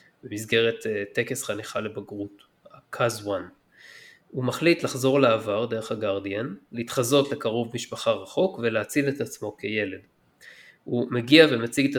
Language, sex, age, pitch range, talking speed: Hebrew, male, 20-39, 110-135 Hz, 125 wpm